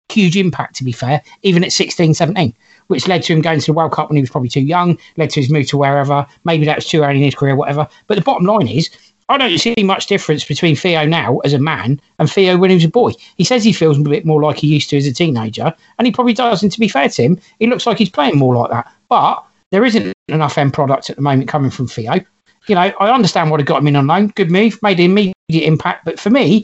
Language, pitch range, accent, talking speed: English, 150-195 Hz, British, 280 wpm